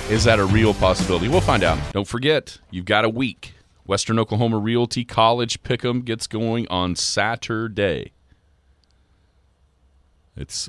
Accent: American